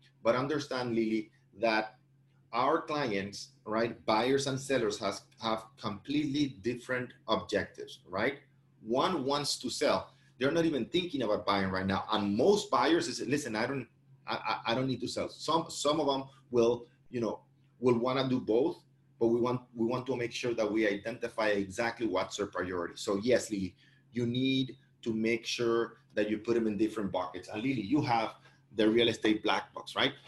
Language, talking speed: English, 180 wpm